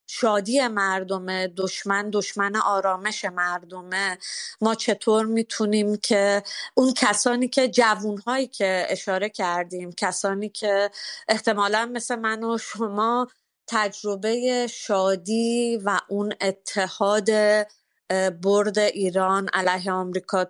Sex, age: female, 30-49